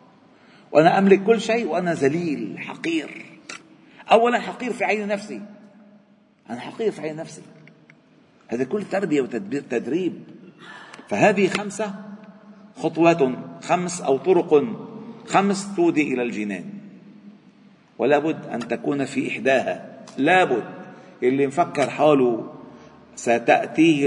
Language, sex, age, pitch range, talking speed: Arabic, male, 50-69, 150-220 Hz, 110 wpm